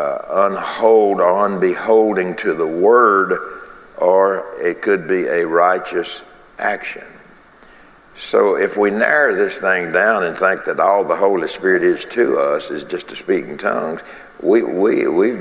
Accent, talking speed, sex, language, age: American, 150 wpm, male, English, 60-79